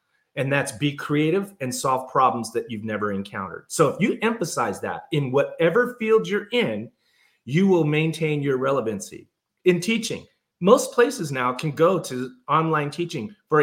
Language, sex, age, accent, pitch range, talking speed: English, male, 30-49, American, 130-180 Hz, 165 wpm